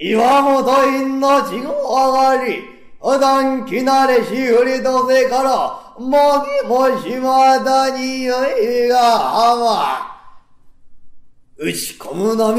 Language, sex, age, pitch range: Japanese, male, 40-59, 220-280 Hz